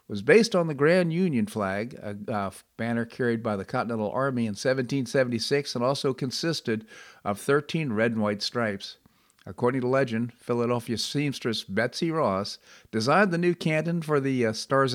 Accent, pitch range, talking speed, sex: American, 110-140 Hz, 155 wpm, male